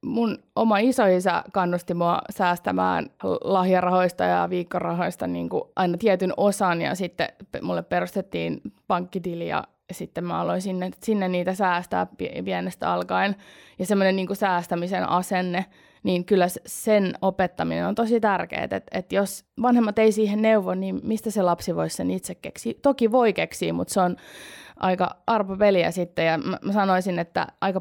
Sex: female